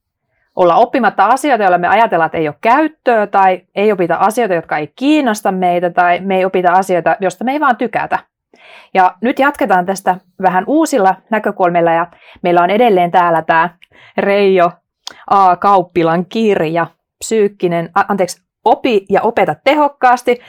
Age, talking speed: 30-49, 145 wpm